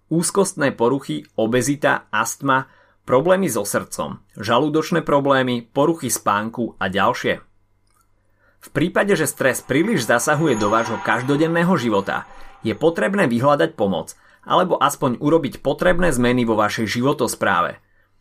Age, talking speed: 30-49, 115 wpm